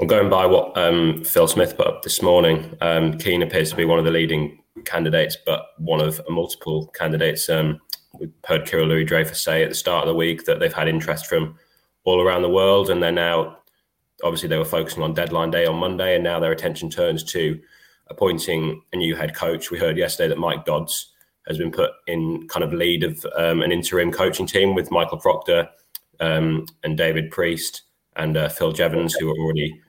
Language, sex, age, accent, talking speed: English, male, 20-39, British, 205 wpm